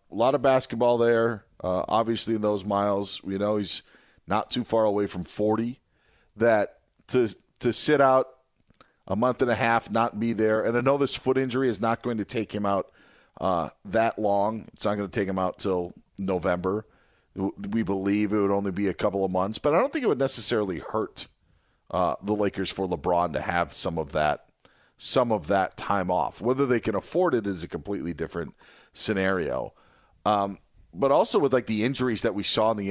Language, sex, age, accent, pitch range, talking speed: English, male, 40-59, American, 100-125 Hz, 205 wpm